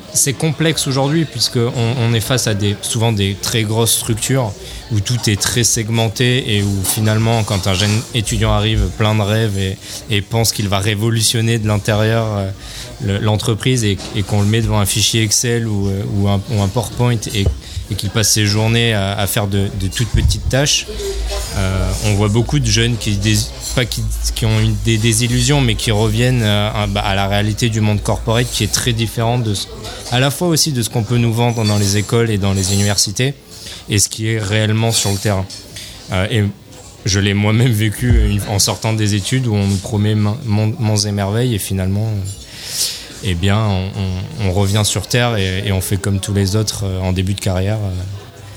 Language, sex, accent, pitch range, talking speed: French, male, French, 100-115 Hz, 210 wpm